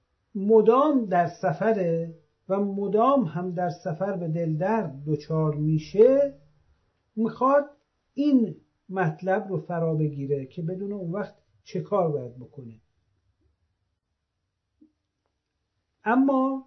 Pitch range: 150-235 Hz